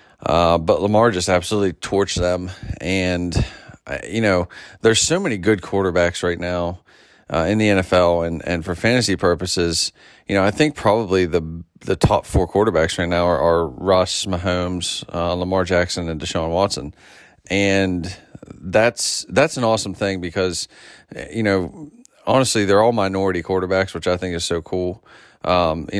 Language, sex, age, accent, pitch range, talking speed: English, male, 30-49, American, 85-95 Hz, 160 wpm